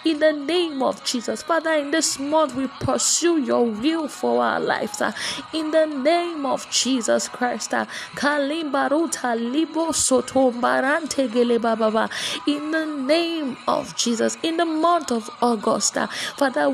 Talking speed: 130 wpm